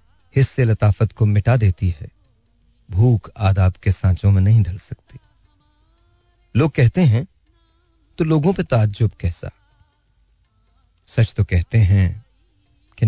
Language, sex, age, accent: Hindi, male, 40-59, native